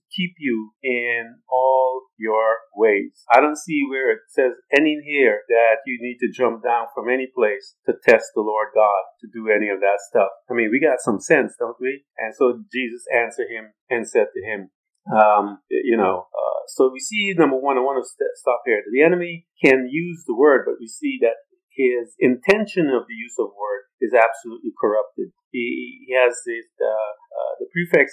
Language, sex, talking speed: English, male, 195 wpm